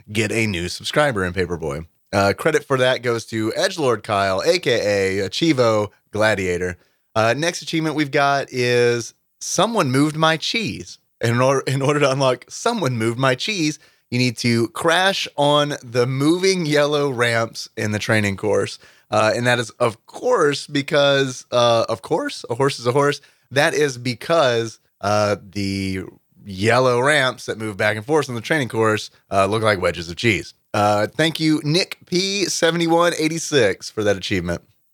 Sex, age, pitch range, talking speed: male, 30-49, 110-150 Hz, 165 wpm